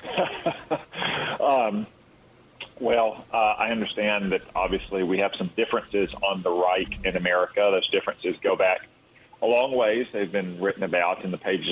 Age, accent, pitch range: 40-59, American, 85-100 Hz